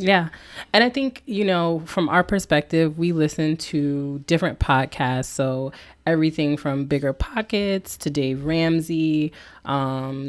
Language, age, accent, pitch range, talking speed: English, 20-39, American, 135-155 Hz, 135 wpm